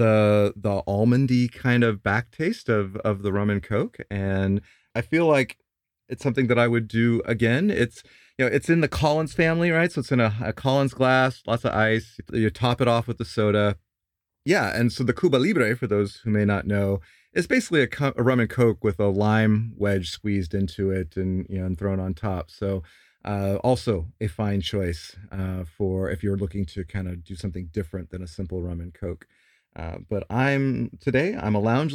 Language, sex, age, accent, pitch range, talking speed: English, male, 30-49, American, 95-125 Hz, 215 wpm